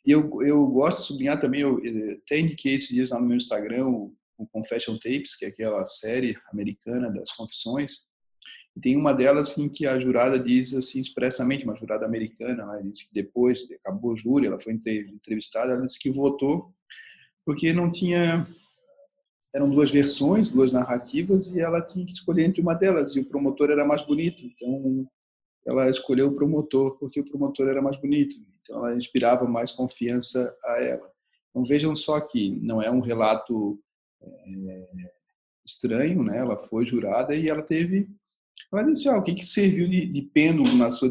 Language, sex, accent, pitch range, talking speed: Portuguese, male, Brazilian, 120-155 Hz, 180 wpm